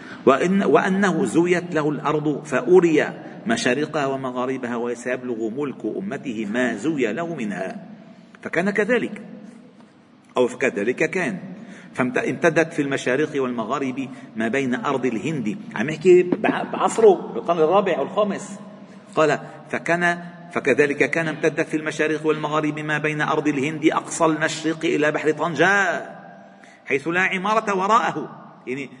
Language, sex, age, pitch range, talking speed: Arabic, male, 50-69, 155-225 Hz, 115 wpm